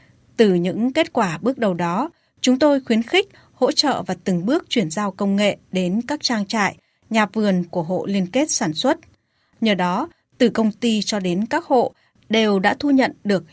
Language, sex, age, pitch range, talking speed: Vietnamese, female, 20-39, 185-250 Hz, 205 wpm